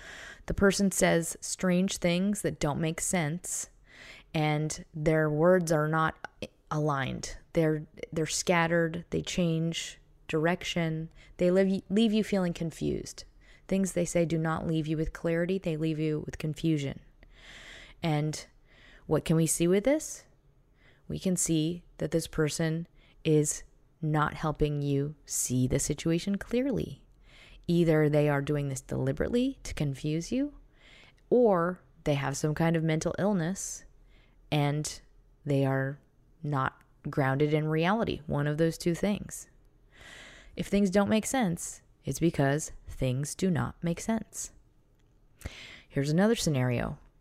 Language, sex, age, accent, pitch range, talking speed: English, female, 20-39, American, 150-180 Hz, 135 wpm